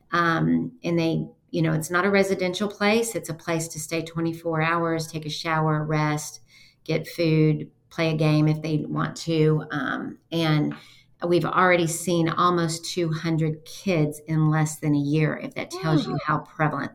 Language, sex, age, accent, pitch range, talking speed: English, female, 40-59, American, 150-170 Hz, 175 wpm